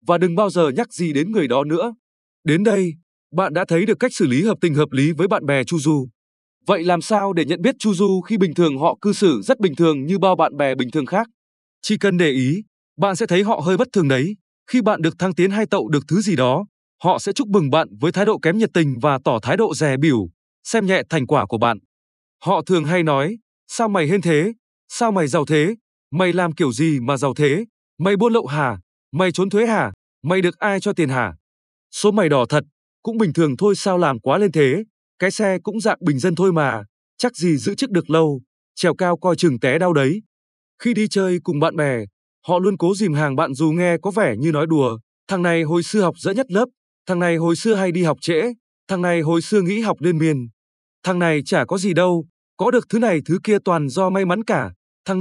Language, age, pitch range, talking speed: Vietnamese, 20-39, 150-200 Hz, 245 wpm